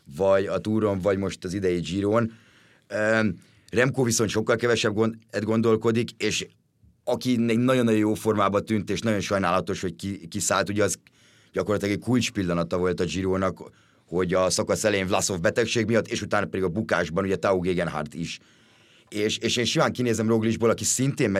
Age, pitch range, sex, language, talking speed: 30-49, 95-115 Hz, male, Hungarian, 160 wpm